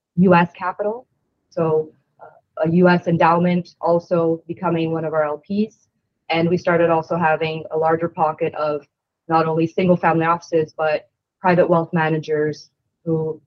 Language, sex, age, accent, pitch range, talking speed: English, female, 20-39, American, 160-180 Hz, 145 wpm